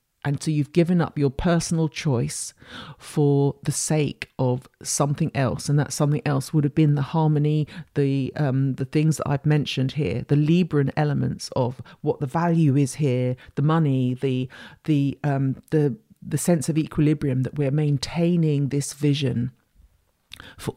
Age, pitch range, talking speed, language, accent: 50-69, 135-155 Hz, 165 wpm, English, British